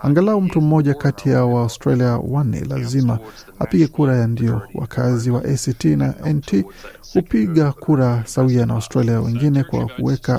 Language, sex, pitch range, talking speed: Swahili, male, 120-145 Hz, 145 wpm